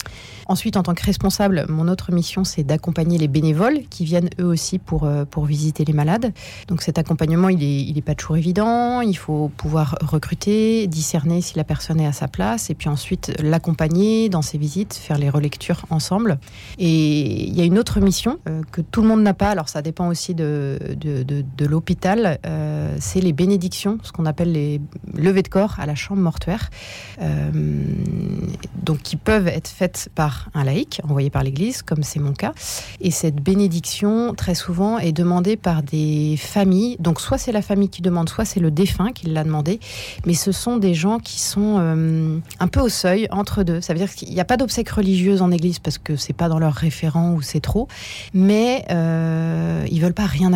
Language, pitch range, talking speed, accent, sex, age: French, 155-190 Hz, 205 wpm, French, female, 30-49